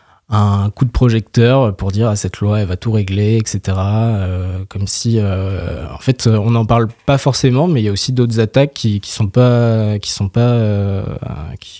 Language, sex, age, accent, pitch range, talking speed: French, male, 20-39, French, 100-120 Hz, 215 wpm